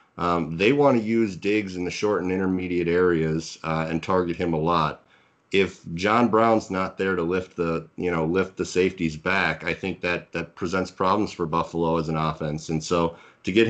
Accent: American